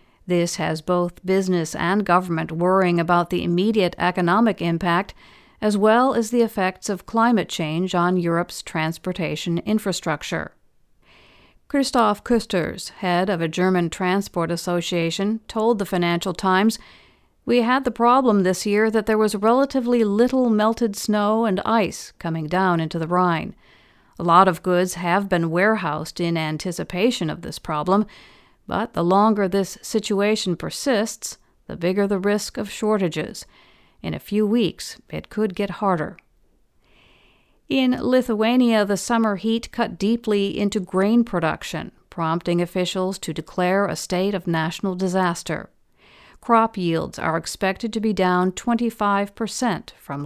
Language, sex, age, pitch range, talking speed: English, female, 50-69, 175-220 Hz, 140 wpm